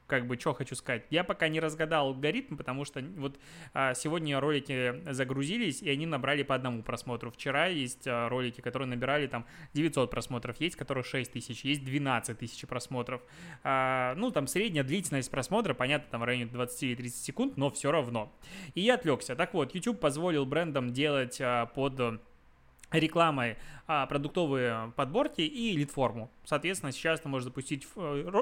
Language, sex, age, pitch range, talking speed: Russian, male, 20-39, 125-155 Hz, 155 wpm